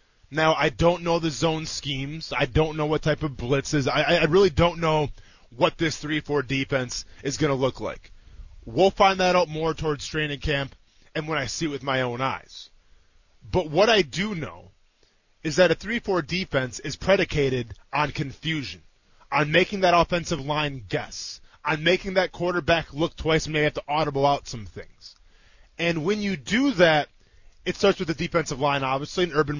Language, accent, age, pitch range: English, American, 20-39, 135-180 Hz